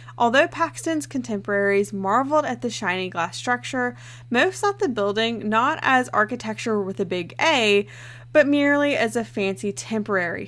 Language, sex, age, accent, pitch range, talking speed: English, female, 20-39, American, 190-255 Hz, 150 wpm